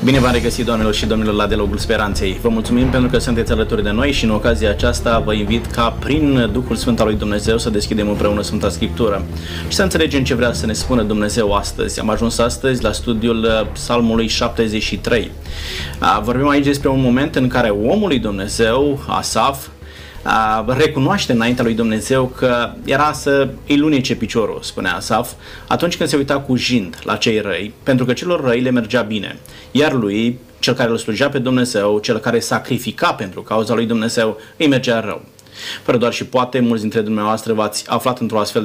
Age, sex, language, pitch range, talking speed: 20-39, male, Romanian, 105-125 Hz, 190 wpm